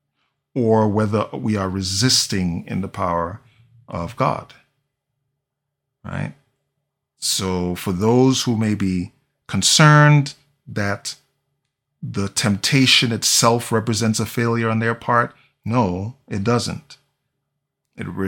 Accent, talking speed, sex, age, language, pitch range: American, 105 wpm, male, 40-59, English, 105-140 Hz